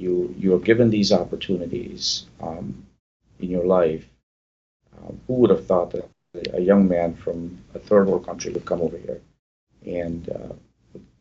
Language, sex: English, male